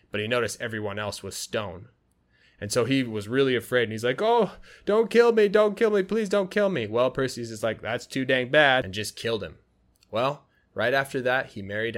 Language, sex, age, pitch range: Chinese, male, 20-39, 105-130 Hz